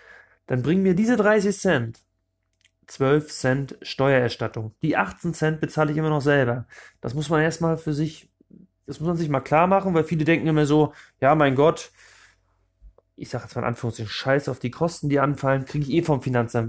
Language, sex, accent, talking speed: German, male, German, 200 wpm